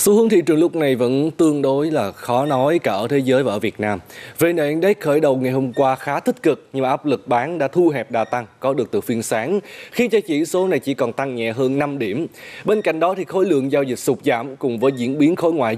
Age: 20-39